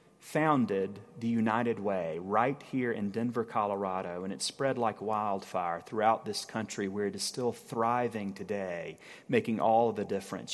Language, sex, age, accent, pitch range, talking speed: English, male, 30-49, American, 115-145 Hz, 155 wpm